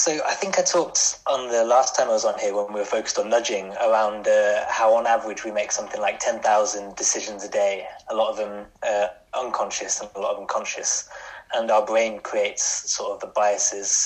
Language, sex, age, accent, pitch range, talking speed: English, male, 20-39, British, 105-120 Hz, 220 wpm